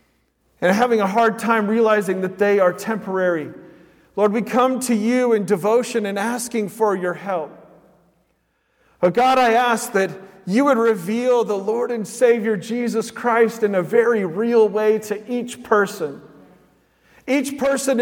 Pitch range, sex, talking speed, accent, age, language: 215-245 Hz, male, 155 wpm, American, 40-59, English